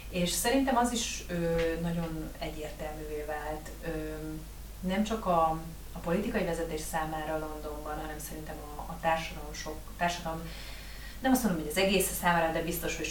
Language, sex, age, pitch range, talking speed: Hungarian, female, 30-49, 155-170 Hz, 155 wpm